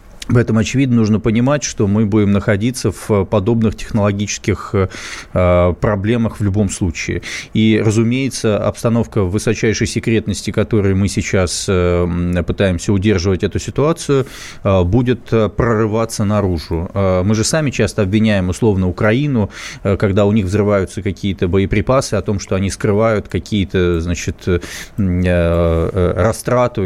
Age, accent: 20-39, native